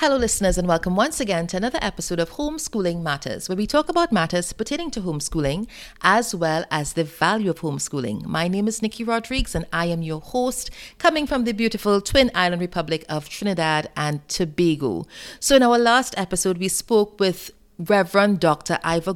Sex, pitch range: female, 165-235 Hz